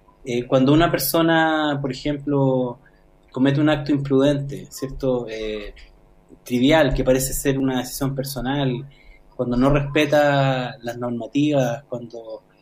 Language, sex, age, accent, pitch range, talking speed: Spanish, male, 20-39, Argentinian, 125-145 Hz, 120 wpm